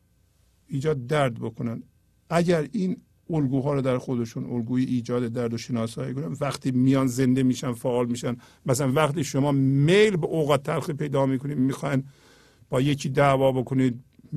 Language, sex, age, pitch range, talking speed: Persian, male, 50-69, 120-145 Hz, 145 wpm